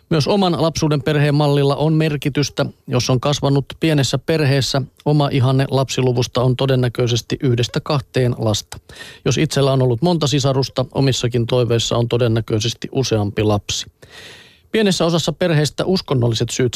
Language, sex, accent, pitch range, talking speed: Finnish, male, native, 120-145 Hz, 130 wpm